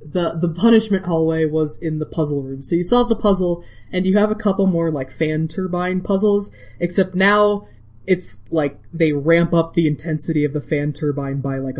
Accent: American